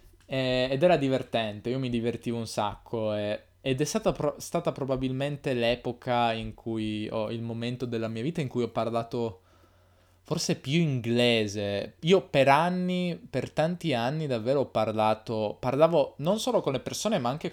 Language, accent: Italian, native